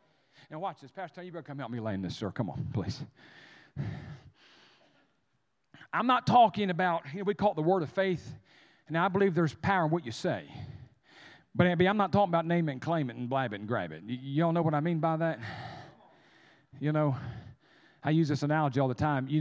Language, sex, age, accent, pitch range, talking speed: English, male, 40-59, American, 125-170 Hz, 225 wpm